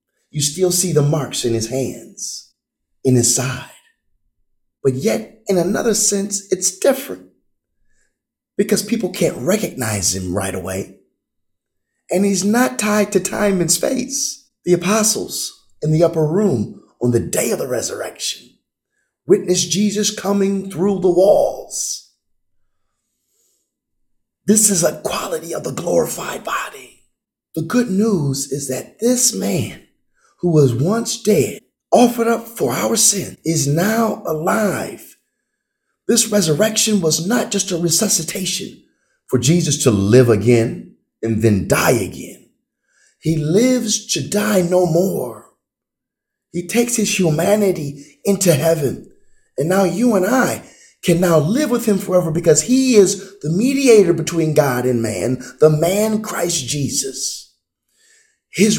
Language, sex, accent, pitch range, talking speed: English, male, American, 140-210 Hz, 135 wpm